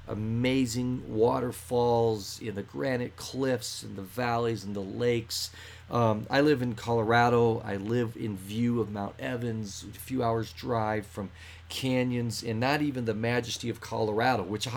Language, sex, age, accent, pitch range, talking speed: English, male, 40-59, American, 95-115 Hz, 155 wpm